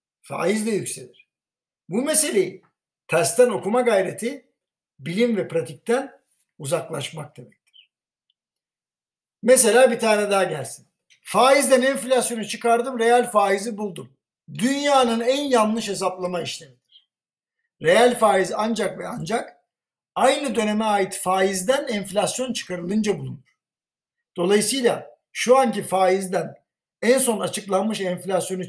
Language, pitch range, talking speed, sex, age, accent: Turkish, 190-245 Hz, 105 wpm, male, 60-79, native